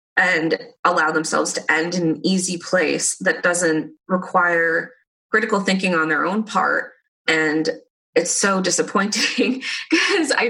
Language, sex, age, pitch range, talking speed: English, female, 20-39, 170-245 Hz, 135 wpm